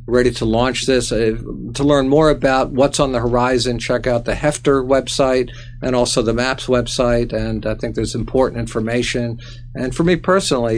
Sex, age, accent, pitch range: male, 50-69, American, 115-135 Hz